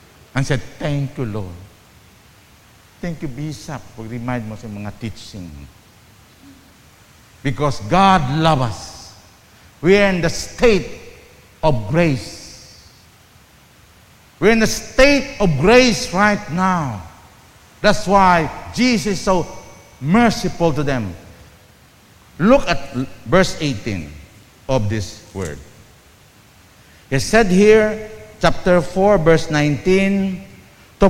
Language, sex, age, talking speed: English, male, 50-69, 105 wpm